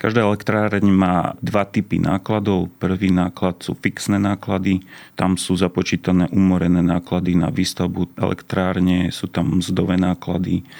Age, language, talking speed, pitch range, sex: 30-49, Slovak, 130 wpm, 90-100 Hz, male